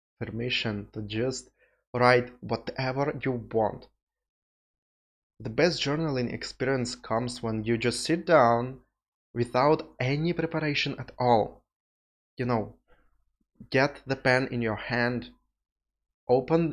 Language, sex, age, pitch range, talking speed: English, male, 20-39, 110-130 Hz, 110 wpm